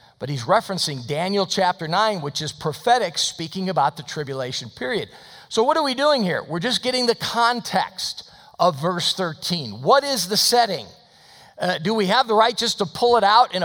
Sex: male